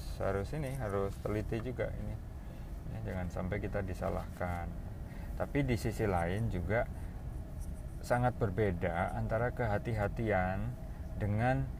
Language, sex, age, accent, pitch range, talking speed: Indonesian, male, 20-39, native, 90-115 Hz, 105 wpm